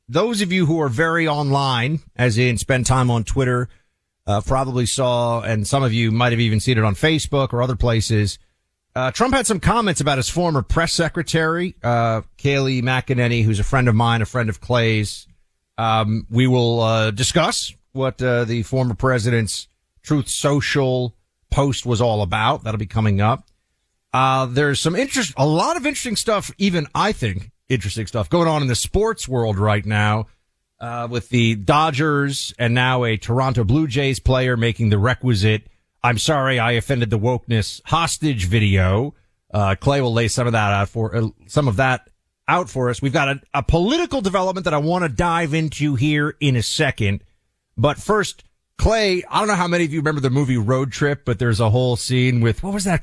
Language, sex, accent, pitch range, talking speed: English, male, American, 110-145 Hz, 195 wpm